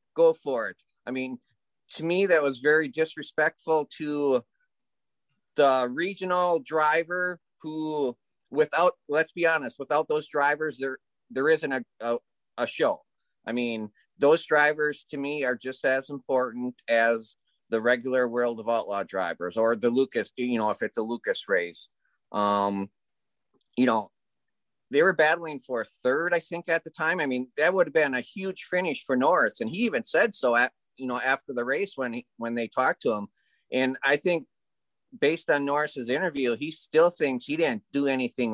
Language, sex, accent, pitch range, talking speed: English, male, American, 125-160 Hz, 175 wpm